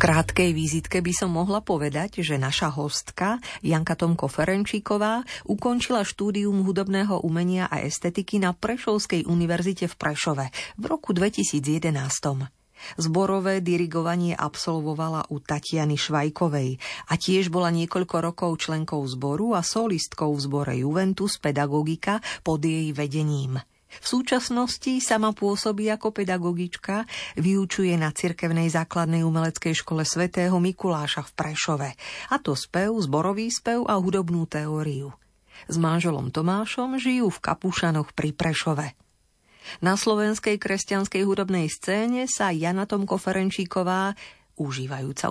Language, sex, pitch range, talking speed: Slovak, female, 150-195 Hz, 120 wpm